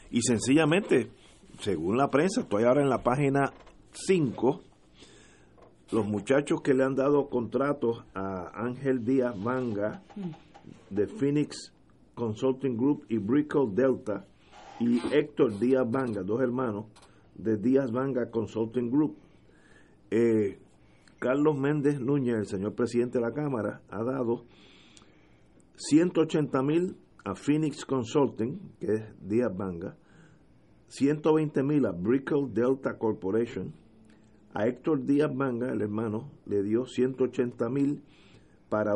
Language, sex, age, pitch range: Spanish, male, 50-69, 110-140 Hz